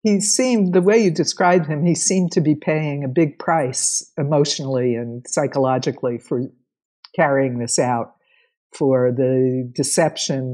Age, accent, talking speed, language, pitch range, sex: 60-79, American, 140 wpm, English, 135-180 Hz, female